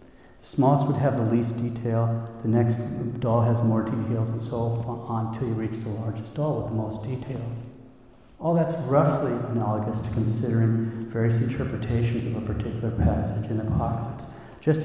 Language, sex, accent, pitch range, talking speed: English, male, American, 110-130 Hz, 165 wpm